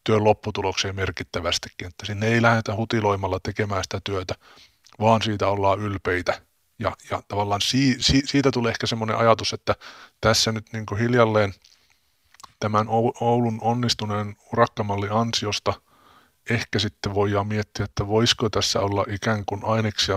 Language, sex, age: Finnish, male, 30-49